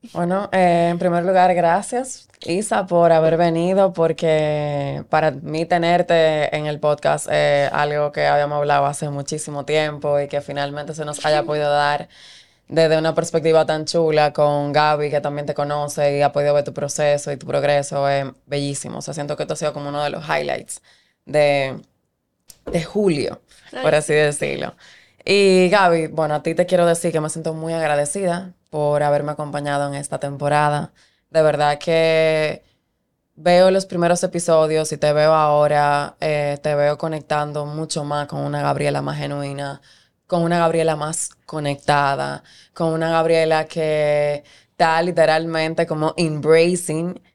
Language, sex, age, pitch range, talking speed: Spanish, female, 20-39, 145-165 Hz, 160 wpm